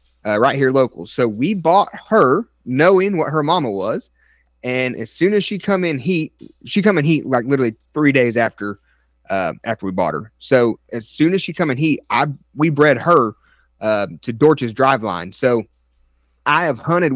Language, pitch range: English, 120-150 Hz